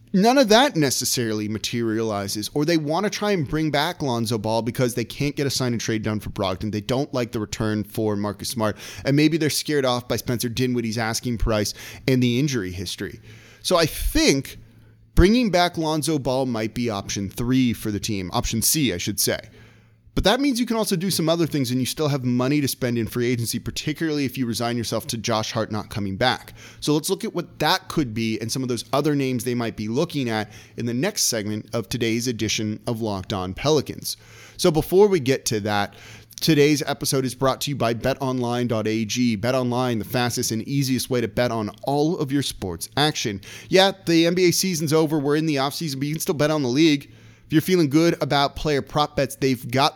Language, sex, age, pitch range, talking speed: English, male, 30-49, 115-150 Hz, 215 wpm